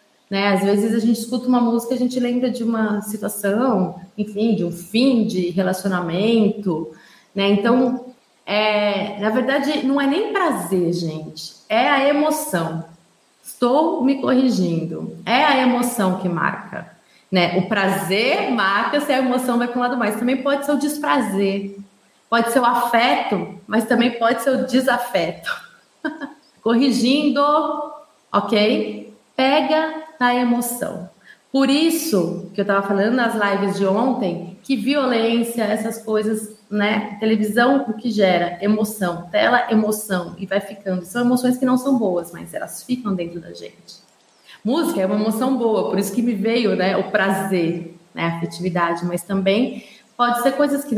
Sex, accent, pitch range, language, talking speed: female, Brazilian, 195-250 Hz, Portuguese, 155 wpm